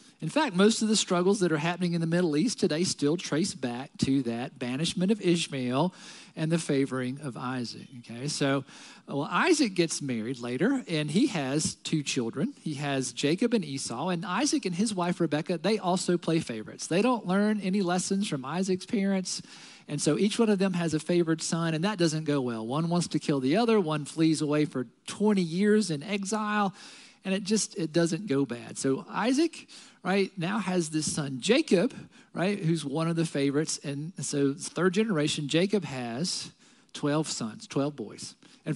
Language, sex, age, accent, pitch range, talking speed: English, male, 40-59, American, 155-220 Hz, 190 wpm